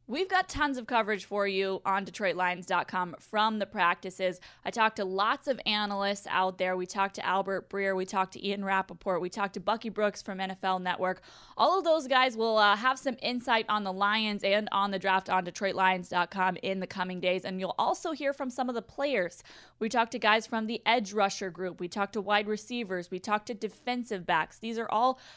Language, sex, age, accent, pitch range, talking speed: English, female, 20-39, American, 190-230 Hz, 215 wpm